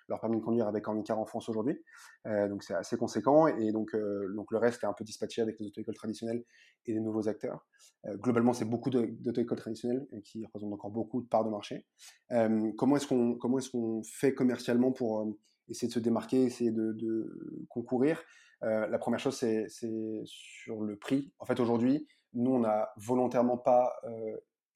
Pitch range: 110-125 Hz